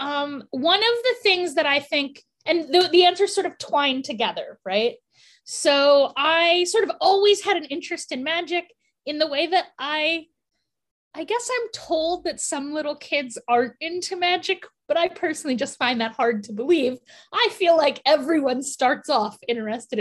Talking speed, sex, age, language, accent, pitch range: 180 wpm, female, 10-29, English, American, 245-345 Hz